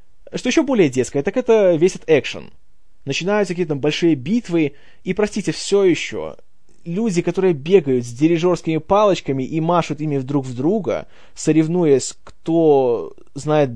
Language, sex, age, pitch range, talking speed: Russian, male, 20-39, 160-220 Hz, 145 wpm